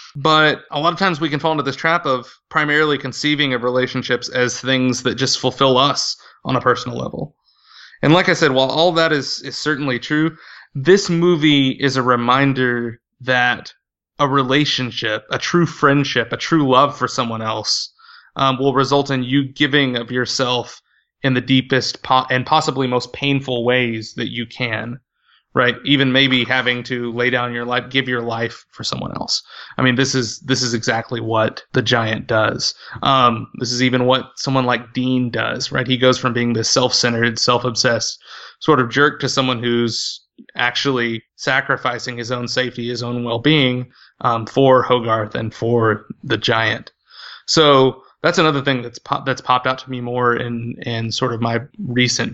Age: 20-39